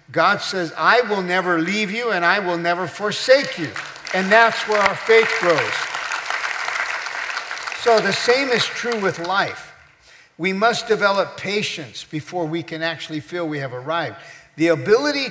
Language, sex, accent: English, male, American